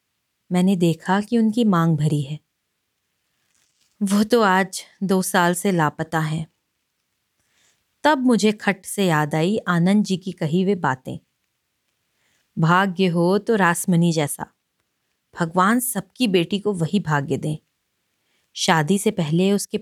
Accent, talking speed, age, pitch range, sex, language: native, 130 wpm, 30-49, 170-210 Hz, female, Hindi